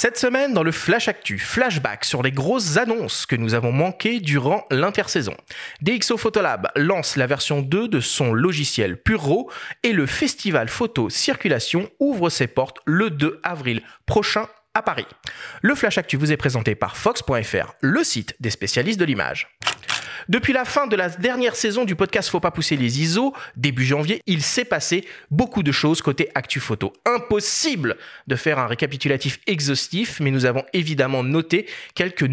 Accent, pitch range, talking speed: French, 135-215 Hz, 170 wpm